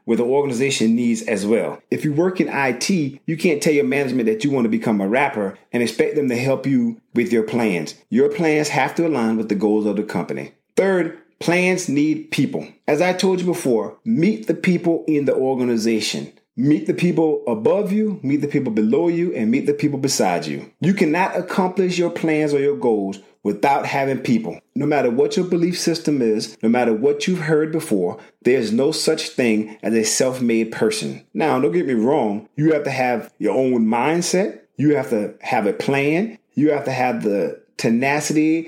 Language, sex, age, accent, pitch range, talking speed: English, male, 30-49, American, 125-175 Hz, 200 wpm